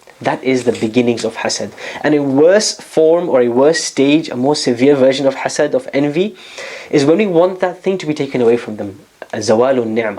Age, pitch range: 20-39, 115-145 Hz